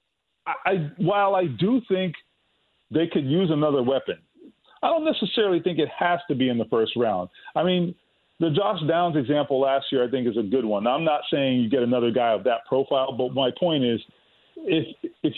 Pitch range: 130-180 Hz